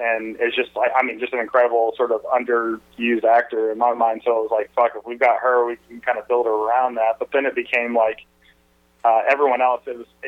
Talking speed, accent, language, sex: 250 wpm, American, English, male